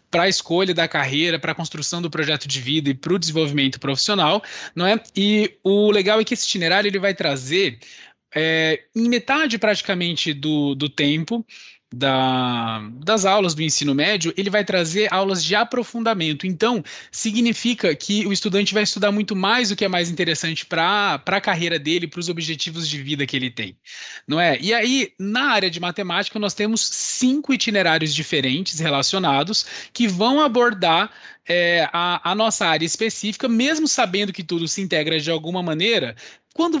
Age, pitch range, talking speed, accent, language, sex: 20-39, 165-220 Hz, 170 wpm, Brazilian, Portuguese, male